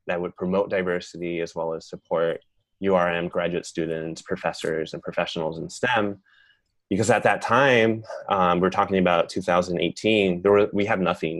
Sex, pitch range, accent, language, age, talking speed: male, 85-100 Hz, American, English, 20-39, 160 wpm